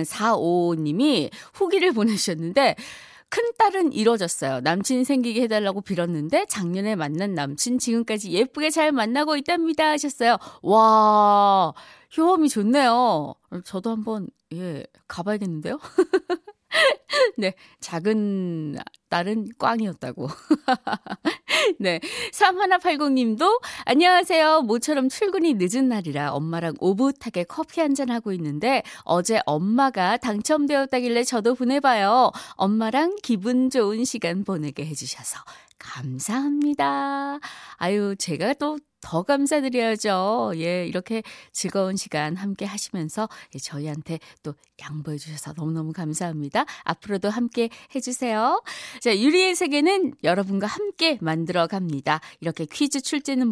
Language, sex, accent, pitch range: Korean, female, native, 175-275 Hz